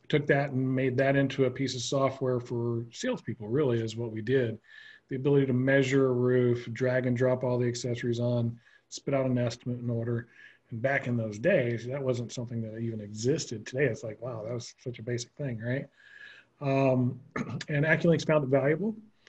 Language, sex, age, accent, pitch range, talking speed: English, male, 40-59, American, 120-140 Hz, 200 wpm